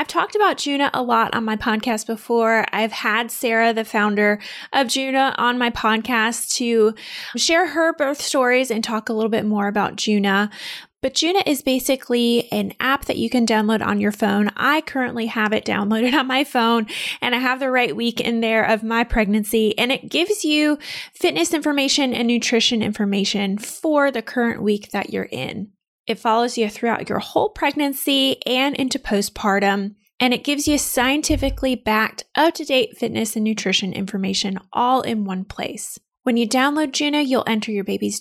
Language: English